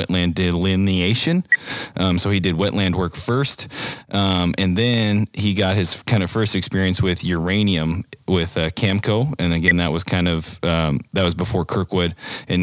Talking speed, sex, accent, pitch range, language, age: 170 wpm, male, American, 90-115 Hz, English, 30-49